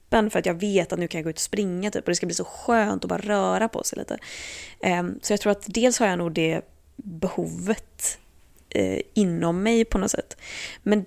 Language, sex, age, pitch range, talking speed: Swedish, female, 20-39, 180-220 Hz, 215 wpm